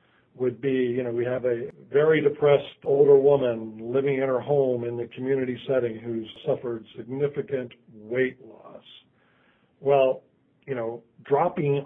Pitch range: 125-155 Hz